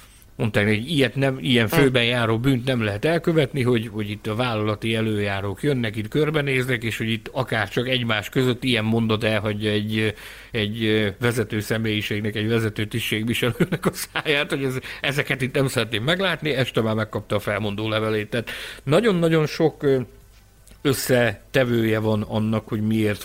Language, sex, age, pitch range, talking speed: Hungarian, male, 60-79, 110-140 Hz, 160 wpm